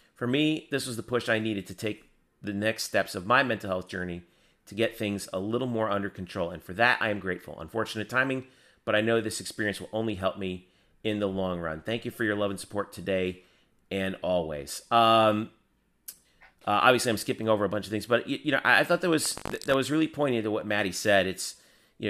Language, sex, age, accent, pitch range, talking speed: English, male, 30-49, American, 100-120 Hz, 240 wpm